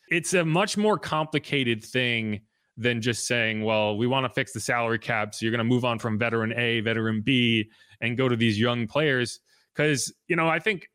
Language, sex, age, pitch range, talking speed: English, male, 30-49, 115-160 Hz, 215 wpm